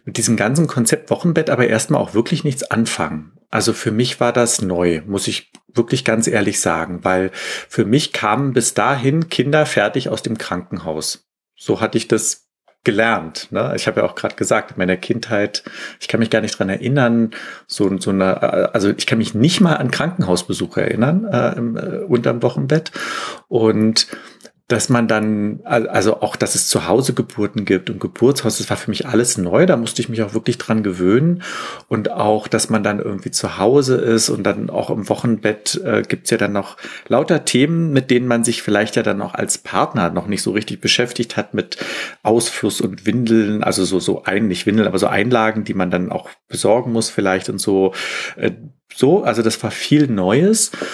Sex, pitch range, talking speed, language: male, 105-130 Hz, 200 wpm, German